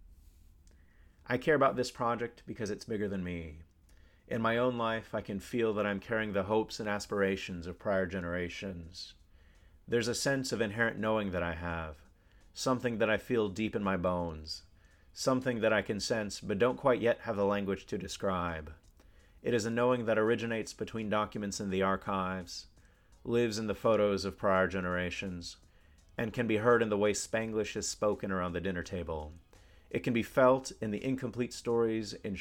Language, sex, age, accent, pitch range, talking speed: English, male, 30-49, American, 85-110 Hz, 185 wpm